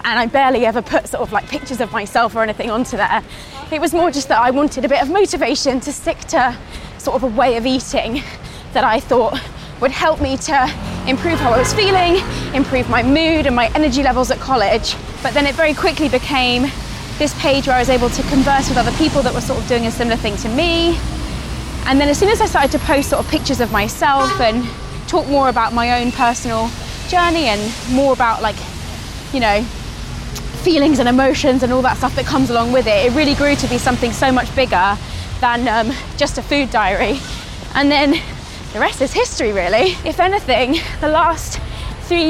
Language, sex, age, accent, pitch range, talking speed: English, female, 20-39, British, 255-315 Hz, 215 wpm